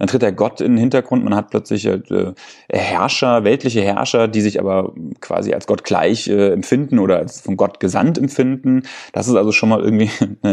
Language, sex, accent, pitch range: German, male, German, 100-125 Hz